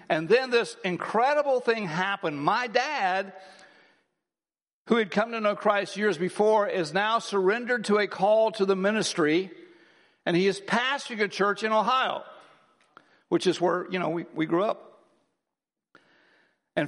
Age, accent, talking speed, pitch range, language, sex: 60-79, American, 155 wpm, 180-225 Hz, English, male